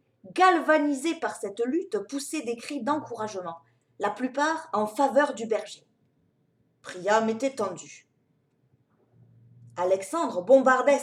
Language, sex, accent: French, female, French